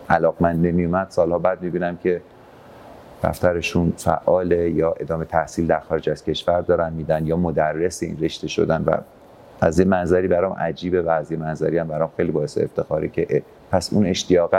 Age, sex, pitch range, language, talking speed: 30-49, male, 85-100 Hz, Persian, 170 wpm